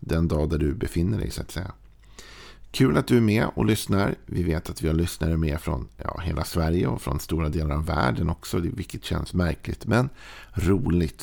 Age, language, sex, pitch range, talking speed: 50-69, Swedish, male, 80-100 Hz, 210 wpm